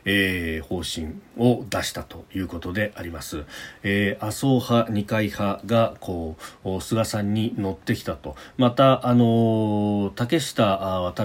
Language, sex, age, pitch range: Japanese, male, 40-59, 95-115 Hz